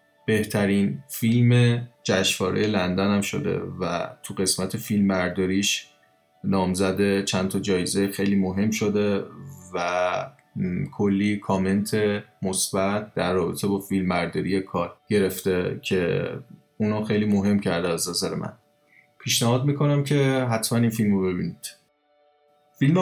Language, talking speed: Persian, 115 wpm